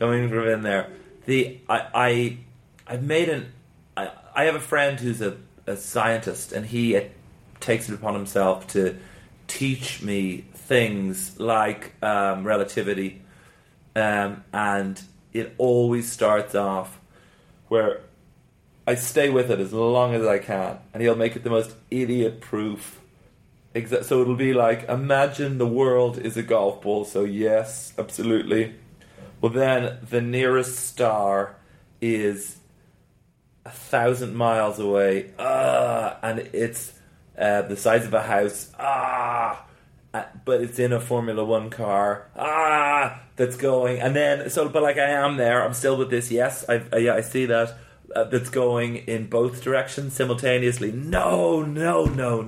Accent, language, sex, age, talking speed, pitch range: British, English, male, 30-49, 150 wpm, 105-125 Hz